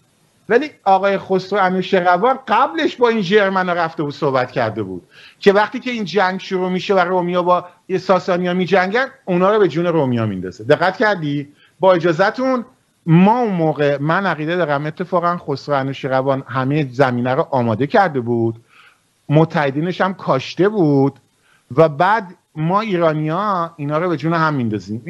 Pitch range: 135-185 Hz